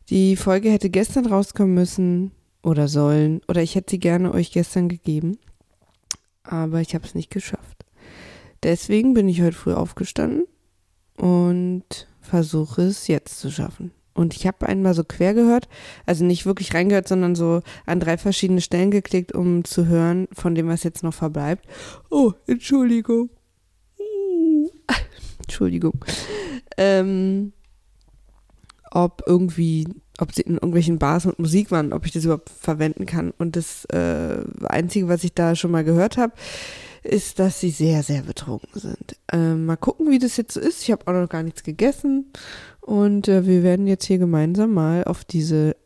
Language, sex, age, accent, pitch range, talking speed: German, female, 20-39, German, 165-200 Hz, 165 wpm